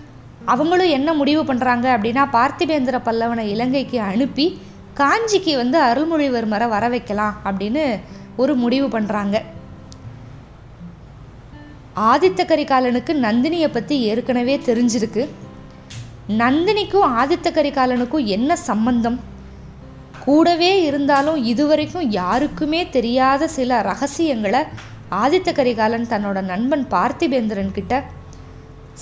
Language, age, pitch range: Tamil, 20-39, 215-300 Hz